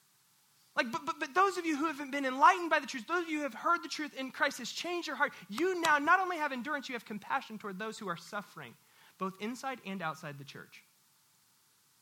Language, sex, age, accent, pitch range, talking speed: English, male, 30-49, American, 130-190 Hz, 240 wpm